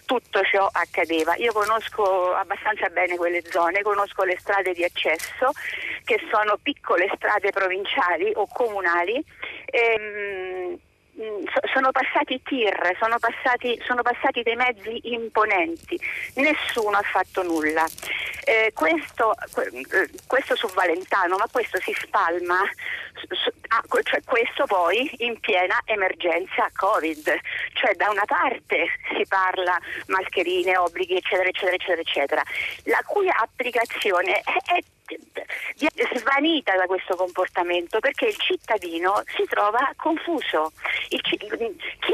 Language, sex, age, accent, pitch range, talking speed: Italian, female, 40-59, native, 185-295 Hz, 120 wpm